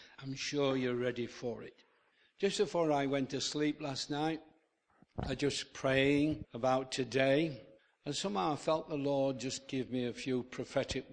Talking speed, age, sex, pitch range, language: 175 wpm, 60-79, male, 125-150 Hz, English